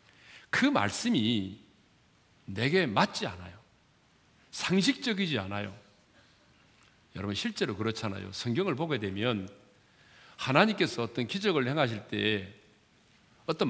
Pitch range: 105-165 Hz